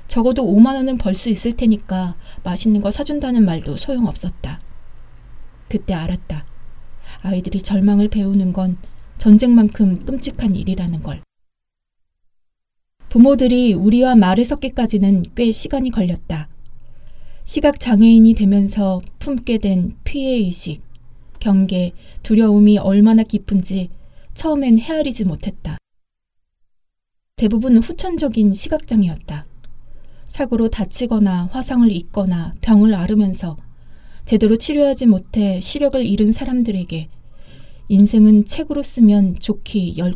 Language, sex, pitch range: Korean, female, 175-230 Hz